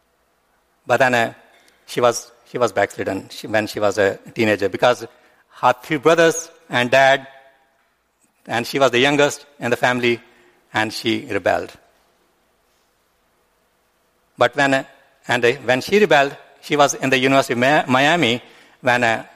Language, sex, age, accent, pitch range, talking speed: English, male, 60-79, Indian, 120-140 Hz, 135 wpm